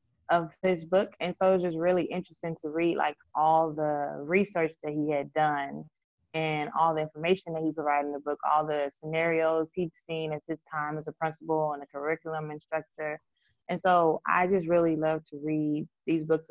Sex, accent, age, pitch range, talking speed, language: female, American, 20-39, 150-175 Hz, 200 wpm, English